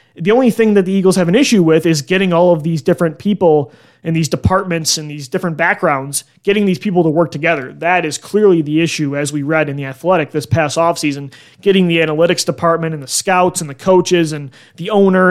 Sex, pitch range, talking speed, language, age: male, 155-185 Hz, 225 wpm, English, 20-39